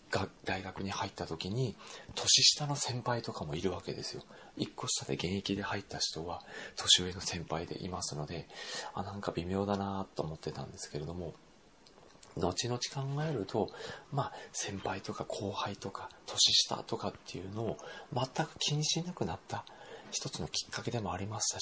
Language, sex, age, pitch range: Japanese, male, 40-59, 95-130 Hz